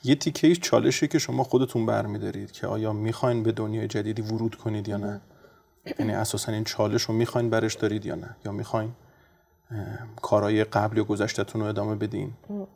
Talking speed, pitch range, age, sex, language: 175 wpm, 105-120 Hz, 30-49, male, Persian